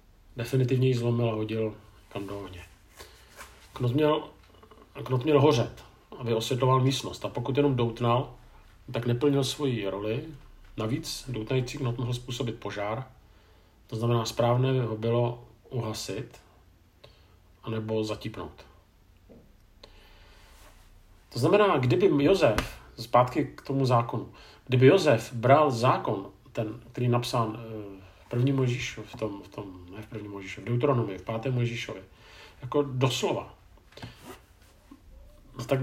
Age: 40-59